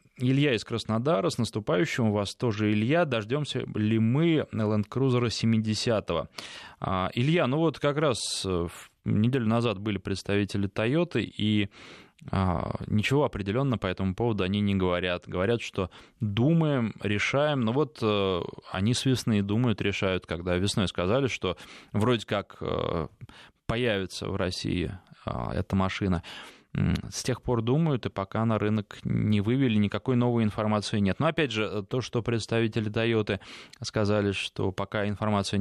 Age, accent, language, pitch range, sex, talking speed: 20-39, native, Russian, 100-125 Hz, male, 135 wpm